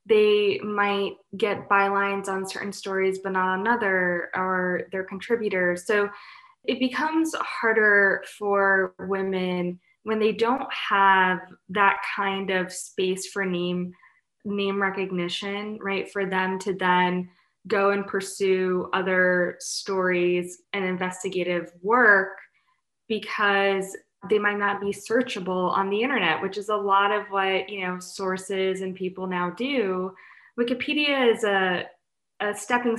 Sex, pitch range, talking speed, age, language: female, 185-215 Hz, 130 wpm, 20-39, English